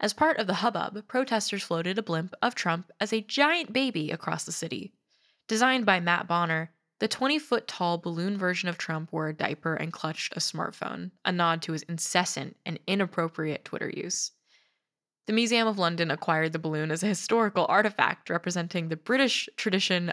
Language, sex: English, female